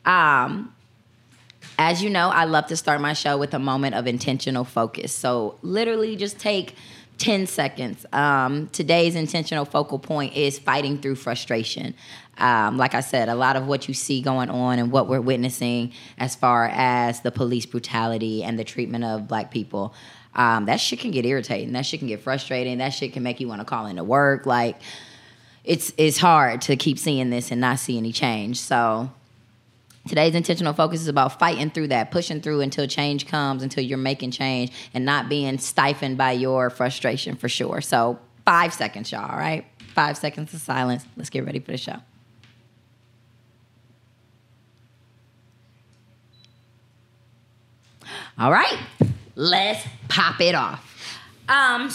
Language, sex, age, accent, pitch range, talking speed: English, female, 20-39, American, 120-145 Hz, 165 wpm